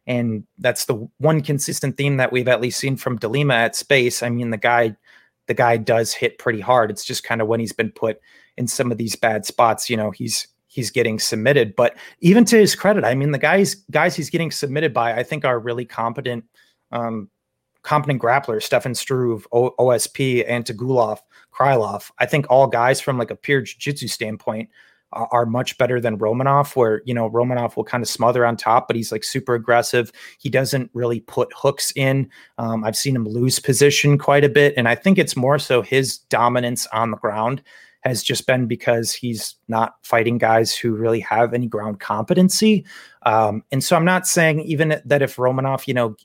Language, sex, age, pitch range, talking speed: English, male, 30-49, 115-140 Hz, 200 wpm